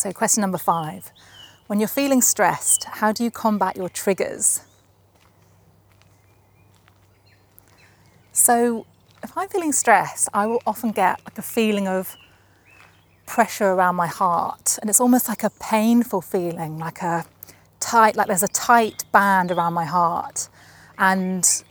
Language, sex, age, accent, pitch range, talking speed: English, female, 30-49, British, 170-210 Hz, 140 wpm